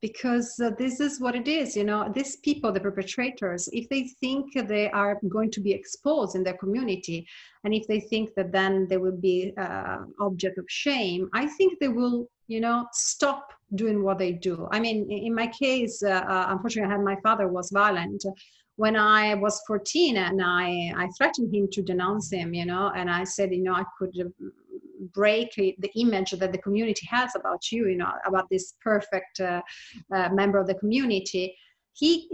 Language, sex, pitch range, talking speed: English, female, 190-245 Hz, 200 wpm